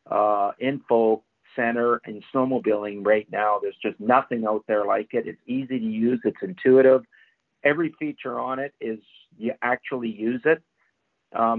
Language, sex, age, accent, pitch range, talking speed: English, male, 50-69, American, 115-140 Hz, 160 wpm